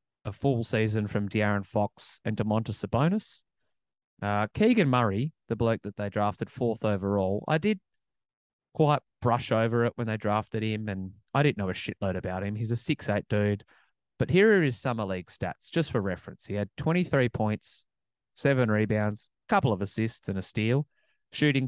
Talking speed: 175 wpm